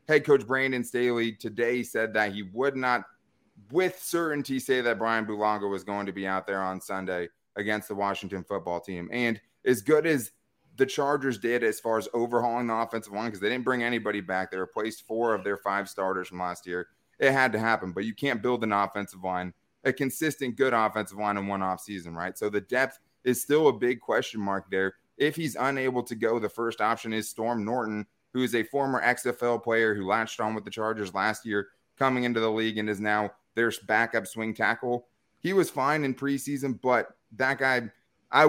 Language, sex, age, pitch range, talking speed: English, male, 20-39, 105-125 Hz, 210 wpm